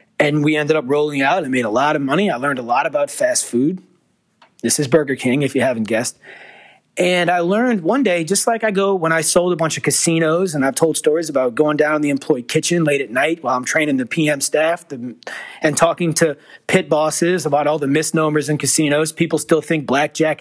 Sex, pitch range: male, 150-180 Hz